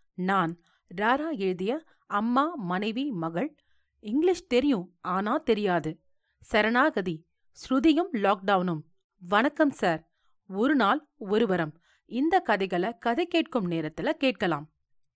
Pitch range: 185-280 Hz